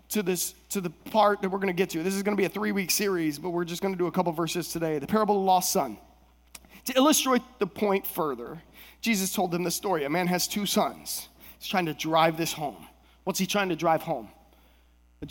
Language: English